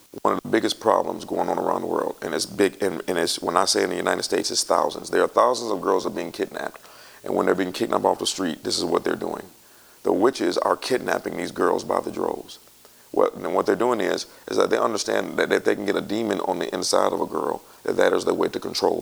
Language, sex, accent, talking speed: English, male, American, 270 wpm